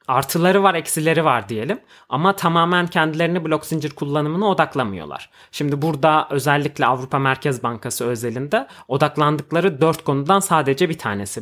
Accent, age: native, 30-49